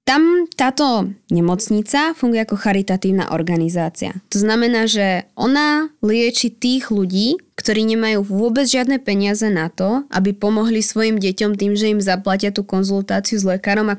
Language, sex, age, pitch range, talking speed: Slovak, female, 20-39, 200-240 Hz, 145 wpm